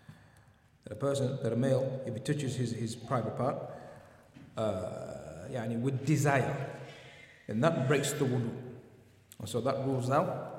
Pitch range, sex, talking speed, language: 110-135 Hz, male, 130 wpm, English